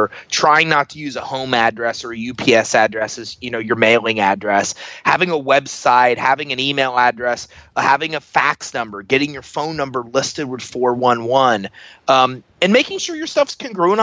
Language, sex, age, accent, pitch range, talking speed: English, male, 30-49, American, 130-180 Hz, 165 wpm